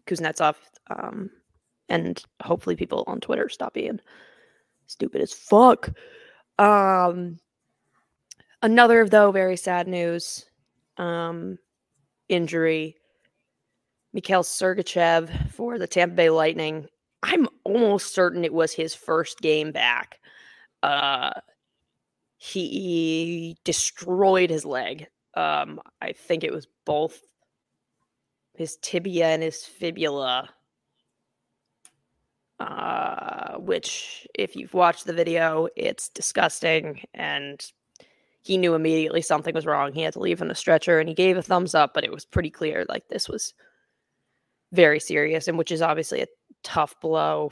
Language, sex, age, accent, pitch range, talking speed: English, female, 20-39, American, 160-185 Hz, 125 wpm